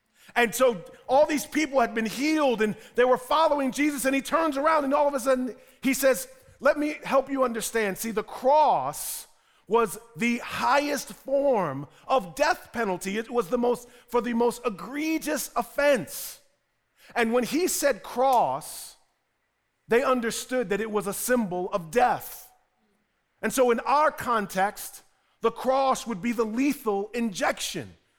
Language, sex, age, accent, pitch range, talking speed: English, male, 40-59, American, 225-275 Hz, 160 wpm